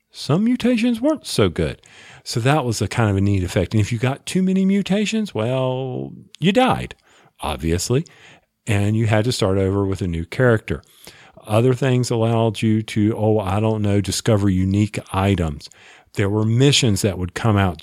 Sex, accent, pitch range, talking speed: male, American, 100-125 Hz, 180 wpm